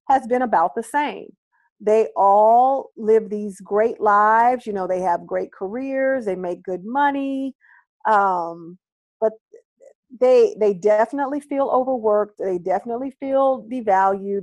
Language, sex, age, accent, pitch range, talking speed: English, female, 40-59, American, 200-270 Hz, 135 wpm